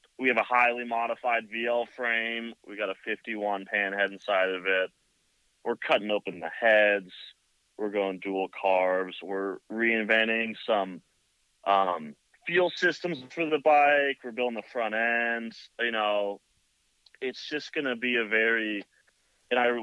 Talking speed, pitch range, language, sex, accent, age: 145 wpm, 100-125 Hz, English, male, American, 30-49